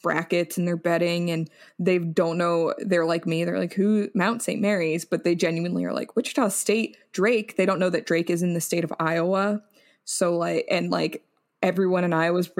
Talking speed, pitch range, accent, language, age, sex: 210 wpm, 170-200 Hz, American, English, 20-39, female